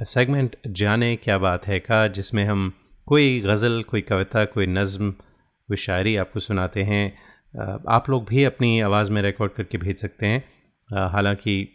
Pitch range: 95-115 Hz